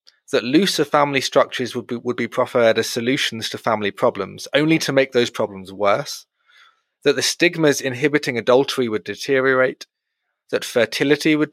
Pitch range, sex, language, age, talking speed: 115-135 Hz, male, English, 30-49, 155 wpm